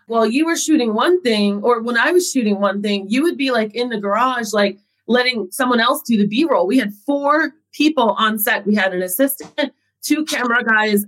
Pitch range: 210-275 Hz